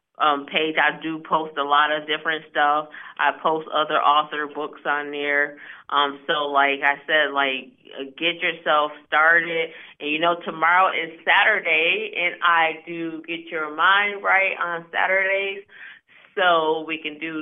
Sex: female